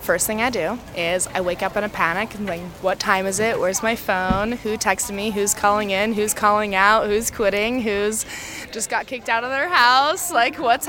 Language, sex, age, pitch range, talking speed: English, female, 20-39, 185-230 Hz, 225 wpm